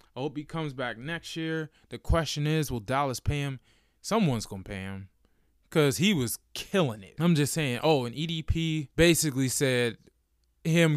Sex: male